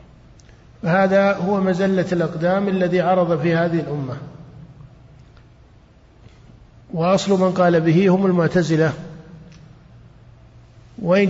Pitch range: 150-185 Hz